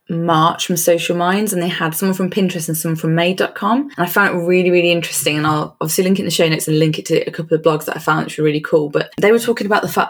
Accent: British